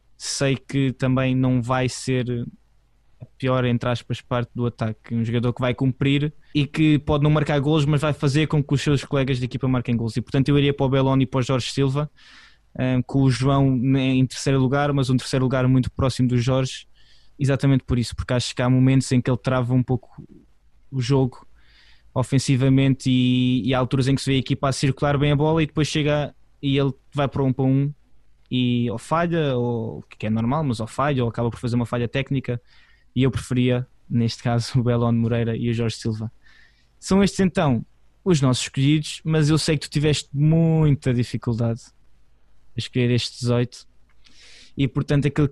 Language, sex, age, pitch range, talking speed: Portuguese, male, 20-39, 120-145 Hz, 205 wpm